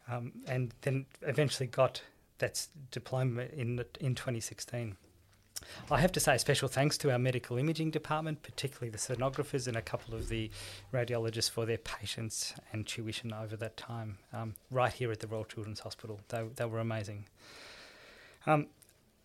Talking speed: 165 wpm